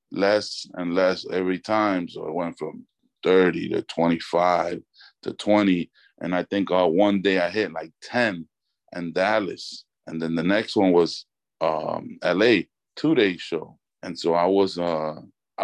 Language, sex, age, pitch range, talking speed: English, male, 20-39, 85-100 Hz, 155 wpm